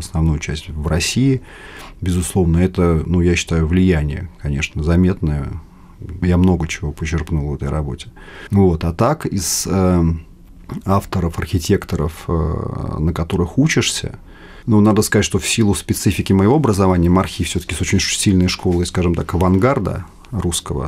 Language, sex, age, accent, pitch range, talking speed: Russian, male, 30-49, native, 80-95 Hz, 145 wpm